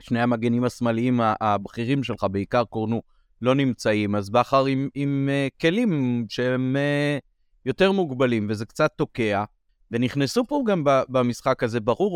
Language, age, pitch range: Hebrew, 30-49, 110-140 Hz